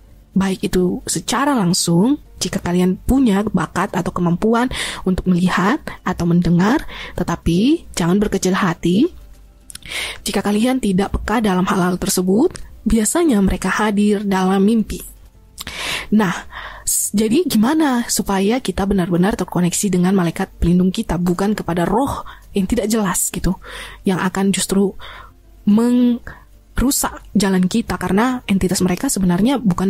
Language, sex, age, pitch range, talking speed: Indonesian, female, 20-39, 185-225 Hz, 120 wpm